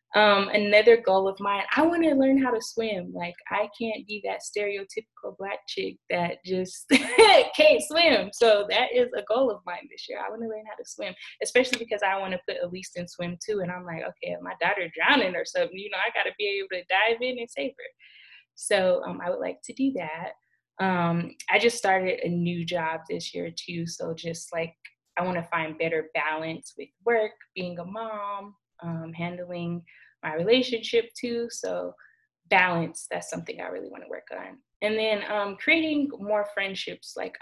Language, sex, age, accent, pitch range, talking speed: English, female, 20-39, American, 160-225 Hz, 200 wpm